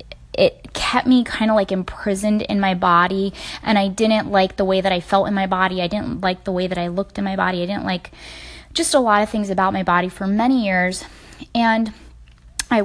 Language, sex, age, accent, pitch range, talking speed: English, female, 10-29, American, 190-220 Hz, 230 wpm